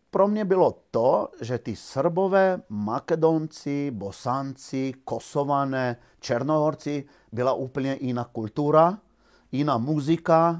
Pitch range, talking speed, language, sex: 120-160 Hz, 95 wpm, Czech, male